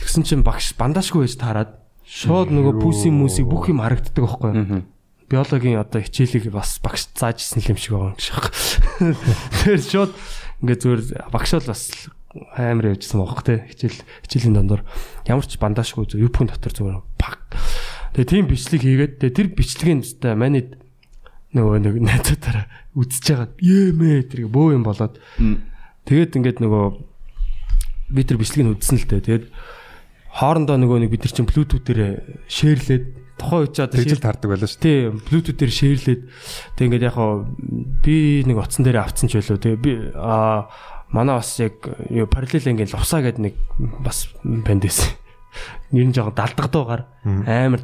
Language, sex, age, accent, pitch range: Korean, male, 20-39, native, 110-140 Hz